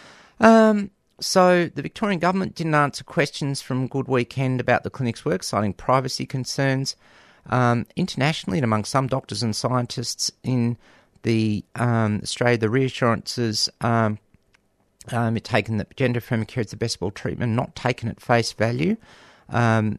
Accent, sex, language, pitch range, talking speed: Australian, male, English, 110-145 Hz, 155 wpm